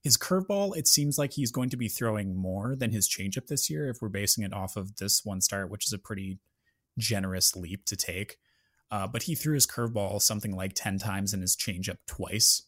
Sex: male